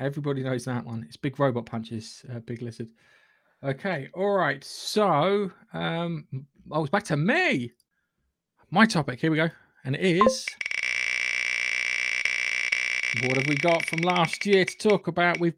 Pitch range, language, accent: 125-165 Hz, English, British